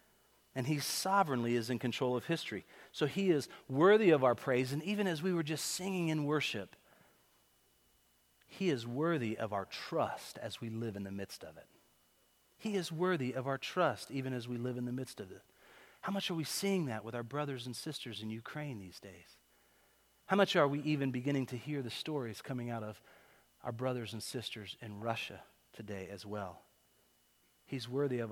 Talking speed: 195 wpm